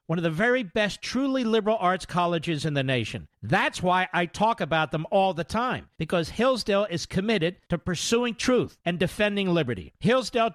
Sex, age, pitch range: male, 50-69, 165-220 Hz